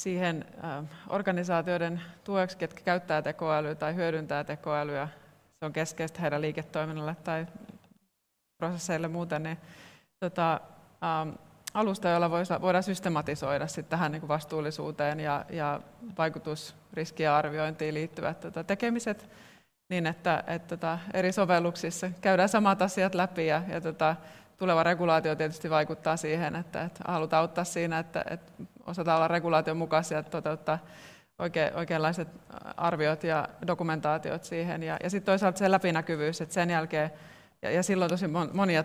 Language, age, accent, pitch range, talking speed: Finnish, 20-39, native, 155-175 Hz, 115 wpm